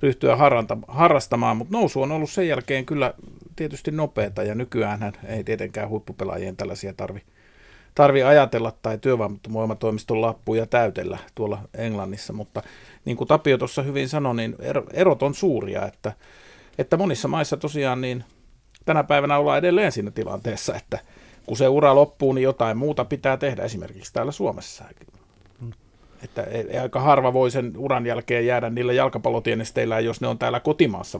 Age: 50-69